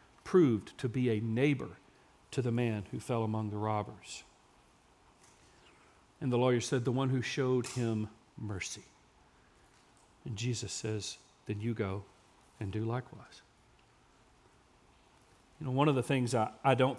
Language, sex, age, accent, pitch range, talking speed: English, male, 40-59, American, 120-160 Hz, 145 wpm